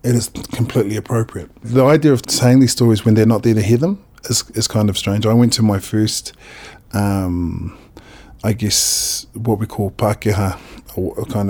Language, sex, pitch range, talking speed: English, male, 105-125 Hz, 190 wpm